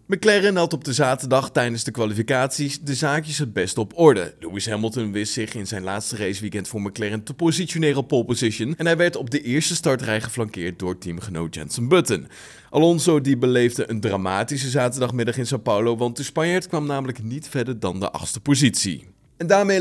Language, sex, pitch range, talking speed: Dutch, male, 110-150 Hz, 190 wpm